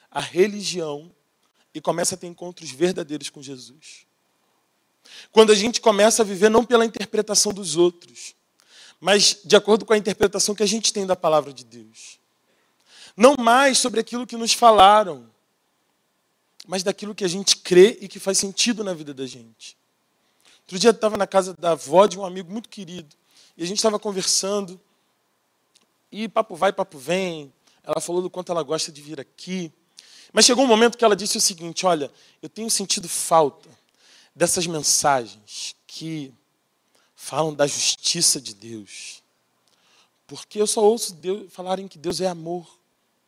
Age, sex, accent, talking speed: 20-39, male, Brazilian, 165 wpm